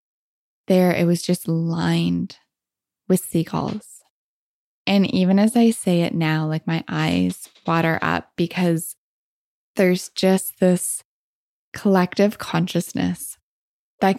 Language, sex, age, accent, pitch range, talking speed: English, female, 20-39, American, 165-185 Hz, 110 wpm